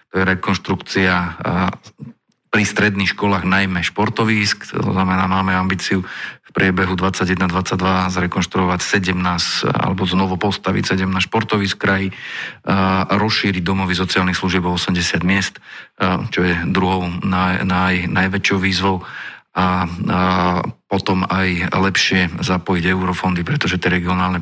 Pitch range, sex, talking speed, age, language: 90-95 Hz, male, 120 wpm, 40-59, Slovak